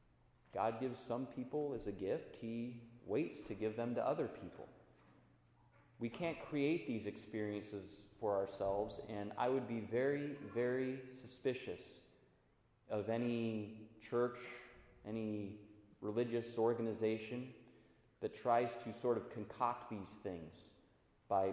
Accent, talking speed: American, 125 wpm